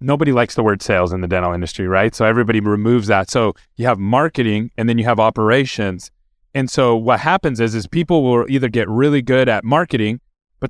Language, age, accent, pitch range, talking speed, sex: English, 30-49, American, 115-155 Hz, 215 wpm, male